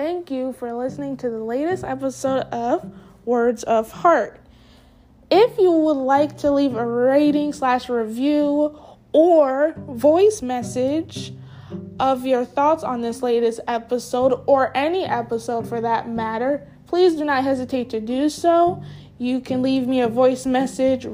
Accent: American